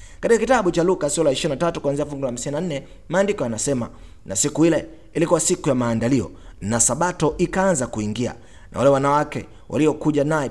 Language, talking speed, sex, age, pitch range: Swahili, 160 wpm, male, 30-49, 115-165 Hz